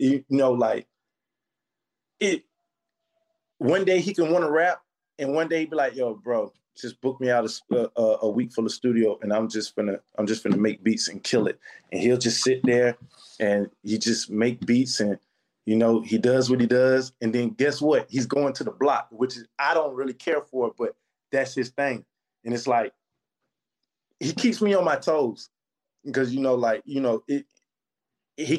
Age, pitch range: 20-39, 120-145 Hz